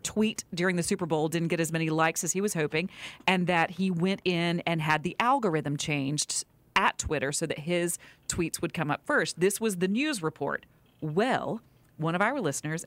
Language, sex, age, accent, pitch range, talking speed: English, female, 40-59, American, 150-205 Hz, 205 wpm